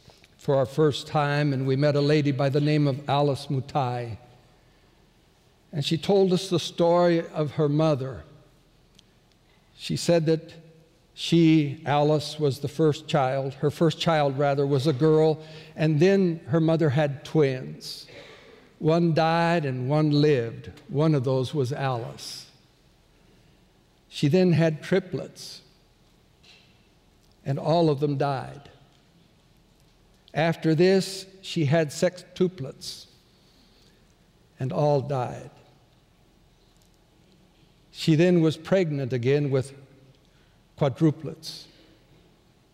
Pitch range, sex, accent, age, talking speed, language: 140-165 Hz, male, American, 60-79, 110 wpm, English